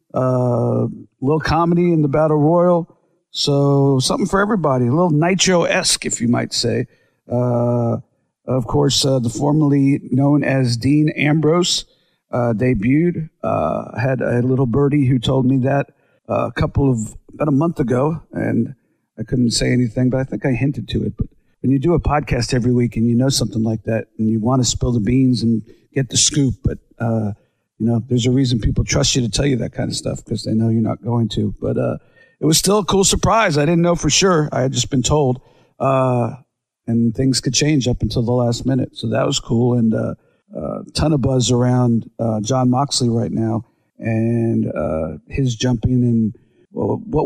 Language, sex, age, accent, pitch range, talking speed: English, male, 50-69, American, 120-145 Hz, 200 wpm